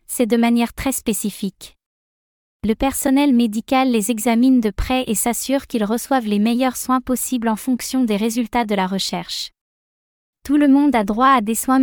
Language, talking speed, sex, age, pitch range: French, 180 wpm, female, 20-39, 225-260 Hz